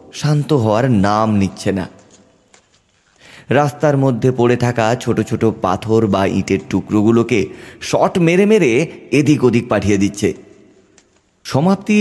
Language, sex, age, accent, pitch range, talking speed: Bengali, male, 30-49, native, 100-135 Hz, 90 wpm